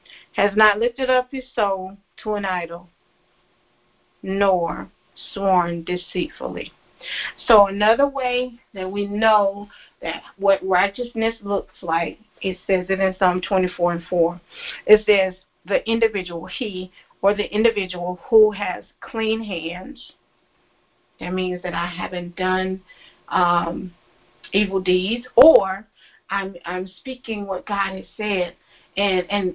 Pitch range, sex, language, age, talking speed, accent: 180-220 Hz, female, English, 40-59, 125 wpm, American